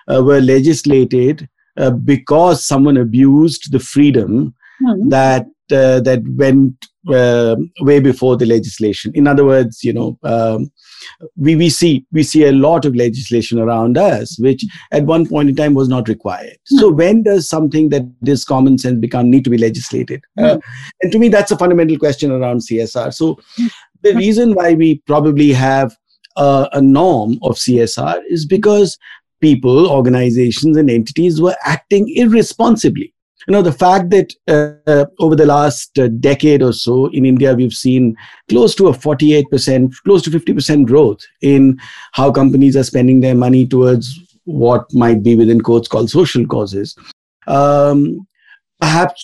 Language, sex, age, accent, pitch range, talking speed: English, male, 50-69, Indian, 125-170 Hz, 160 wpm